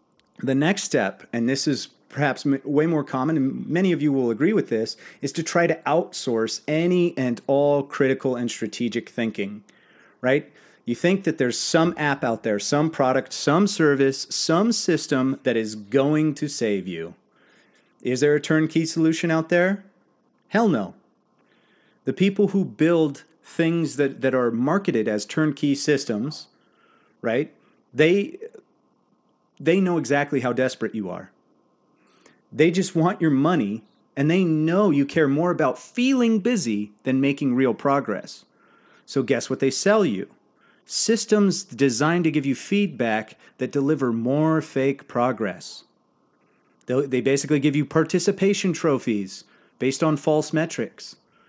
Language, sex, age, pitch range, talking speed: English, male, 30-49, 130-165 Hz, 145 wpm